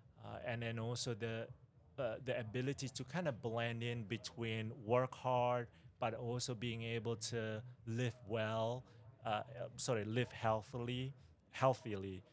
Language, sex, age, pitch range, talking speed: Russian, male, 30-49, 110-130 Hz, 135 wpm